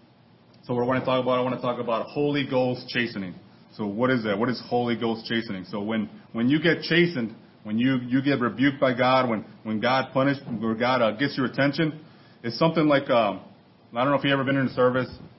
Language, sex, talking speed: English, male, 240 wpm